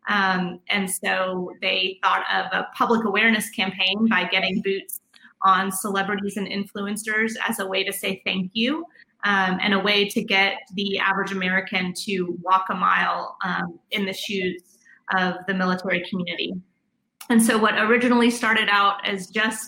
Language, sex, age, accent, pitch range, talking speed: English, female, 30-49, American, 190-215 Hz, 160 wpm